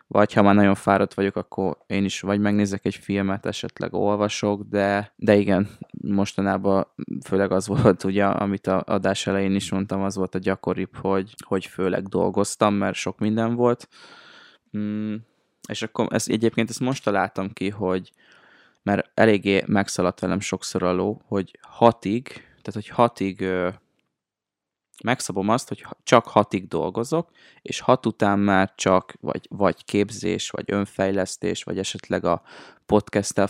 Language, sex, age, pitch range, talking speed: Hungarian, male, 20-39, 95-110 Hz, 150 wpm